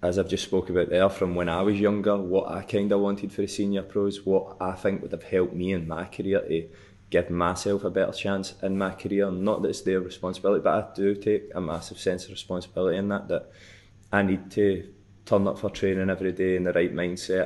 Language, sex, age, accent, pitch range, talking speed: English, male, 20-39, British, 90-100 Hz, 235 wpm